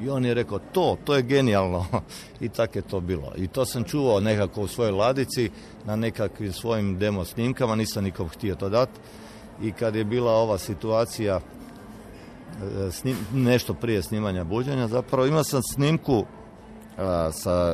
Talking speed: 155 wpm